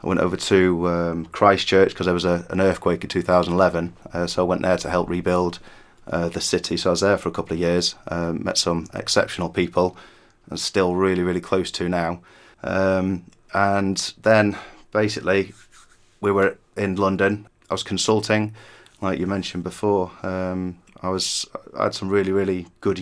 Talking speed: 180 wpm